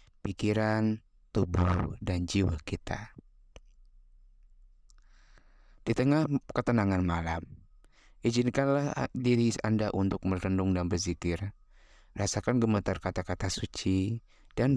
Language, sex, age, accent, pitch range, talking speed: Indonesian, male, 20-39, native, 90-115 Hz, 85 wpm